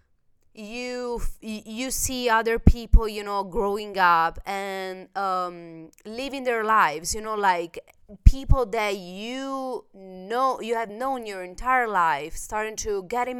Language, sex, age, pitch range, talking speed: Italian, female, 20-39, 180-220 Hz, 135 wpm